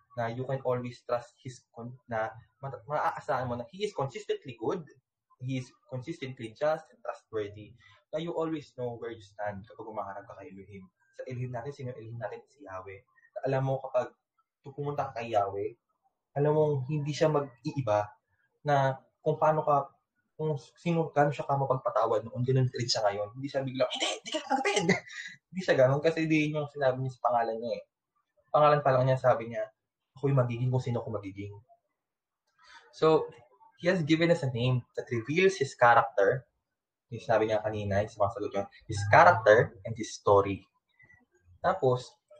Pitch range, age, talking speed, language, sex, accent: 115-155 Hz, 20-39, 175 wpm, Filipino, male, native